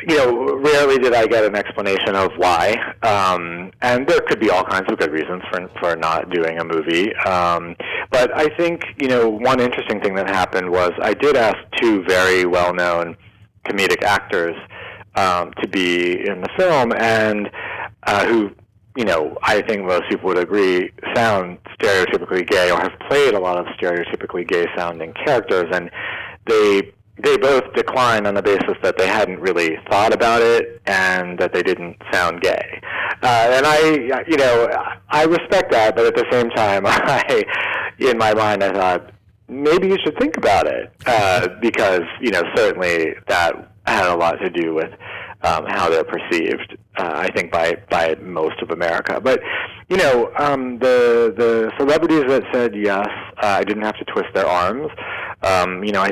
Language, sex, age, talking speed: English, male, 30-49, 180 wpm